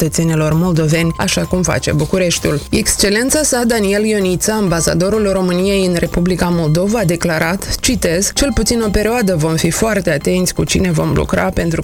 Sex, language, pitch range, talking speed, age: female, Romanian, 170-210 Hz, 155 wpm, 20-39